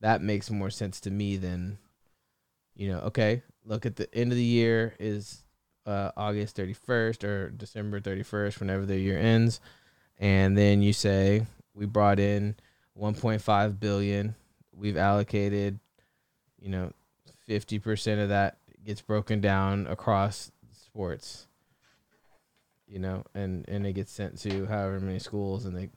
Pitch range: 95-110 Hz